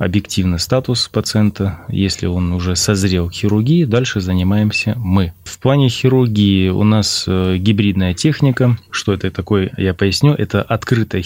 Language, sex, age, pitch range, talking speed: Russian, male, 20-39, 95-120 Hz, 140 wpm